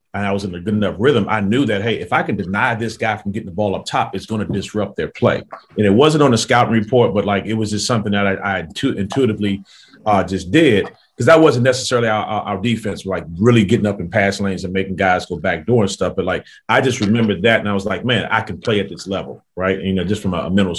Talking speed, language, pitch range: 280 wpm, English, 95-115 Hz